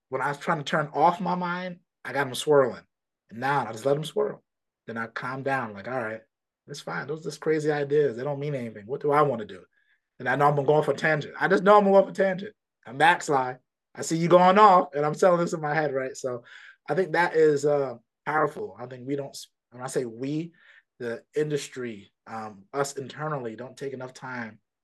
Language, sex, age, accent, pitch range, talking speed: English, male, 30-49, American, 130-185 Hz, 240 wpm